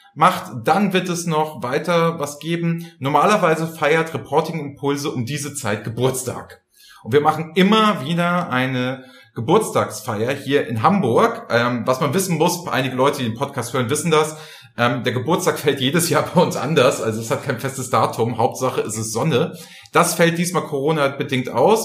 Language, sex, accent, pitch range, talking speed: German, male, German, 125-170 Hz, 170 wpm